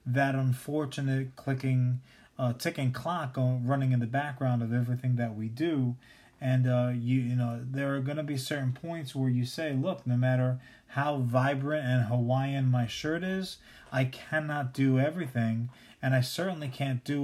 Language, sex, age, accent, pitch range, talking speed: English, male, 30-49, American, 125-145 Hz, 175 wpm